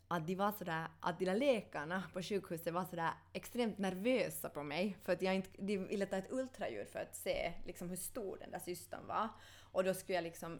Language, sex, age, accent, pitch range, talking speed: Swedish, female, 20-39, native, 175-230 Hz, 225 wpm